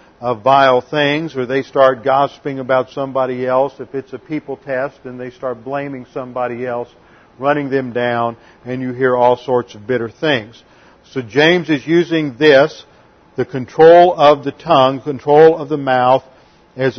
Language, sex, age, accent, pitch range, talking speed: English, male, 50-69, American, 130-160 Hz, 165 wpm